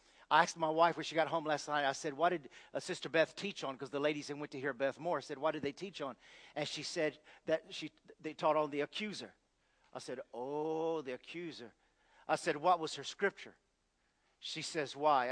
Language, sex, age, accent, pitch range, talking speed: English, male, 50-69, American, 145-175 Hz, 230 wpm